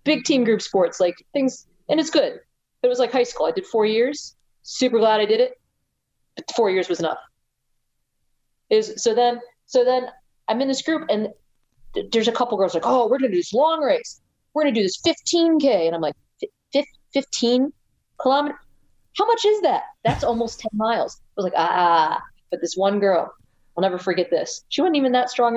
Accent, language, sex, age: American, English, female, 40-59